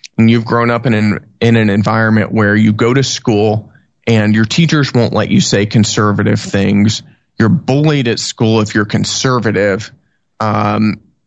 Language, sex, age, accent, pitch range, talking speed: English, male, 20-39, American, 110-130 Hz, 160 wpm